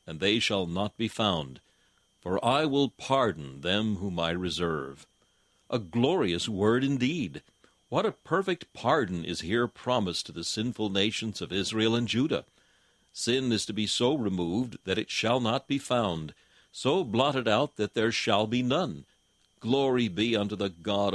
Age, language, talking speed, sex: 60-79, English, 165 wpm, male